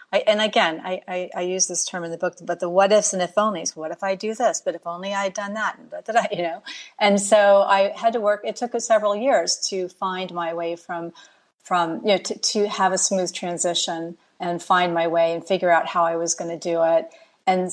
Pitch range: 175-220 Hz